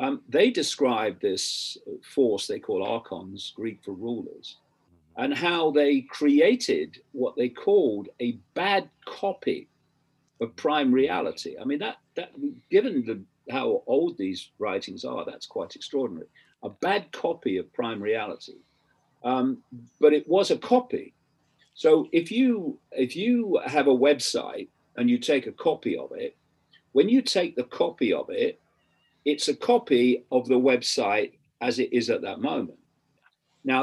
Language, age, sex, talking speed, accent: English, 50-69, male, 150 wpm, British